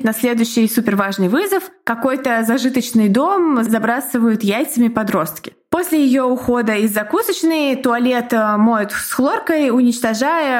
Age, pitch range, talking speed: 20-39, 205-265 Hz, 115 wpm